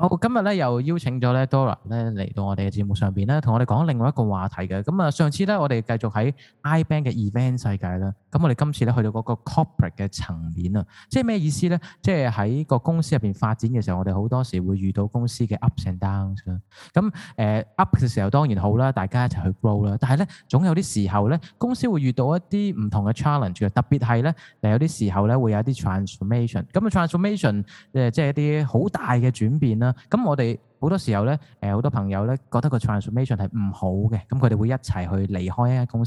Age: 20-39